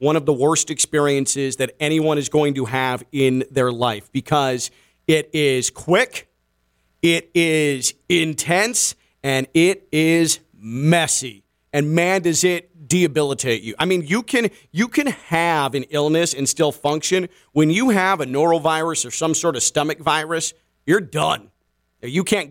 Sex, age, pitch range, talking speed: male, 40-59, 120-175 Hz, 155 wpm